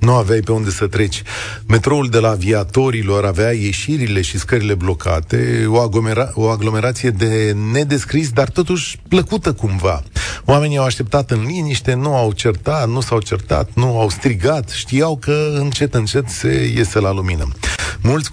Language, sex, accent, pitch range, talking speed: Romanian, male, native, 100-140 Hz, 155 wpm